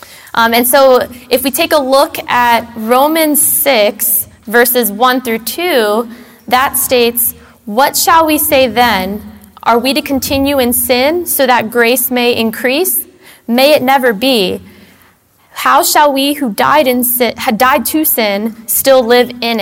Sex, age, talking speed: female, 20-39, 155 wpm